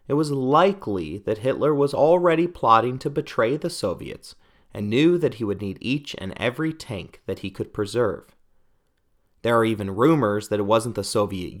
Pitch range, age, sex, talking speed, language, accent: 100-145 Hz, 30-49, male, 180 wpm, English, American